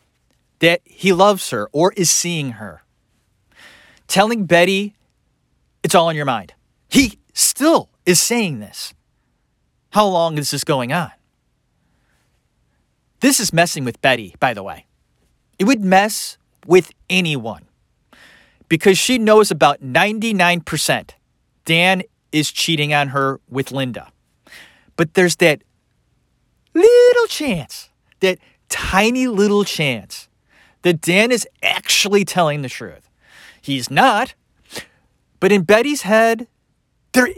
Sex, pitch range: male, 140-205 Hz